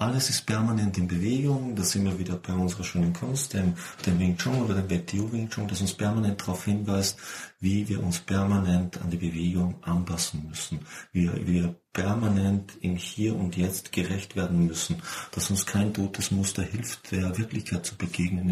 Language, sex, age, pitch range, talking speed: German, male, 40-59, 90-105 Hz, 180 wpm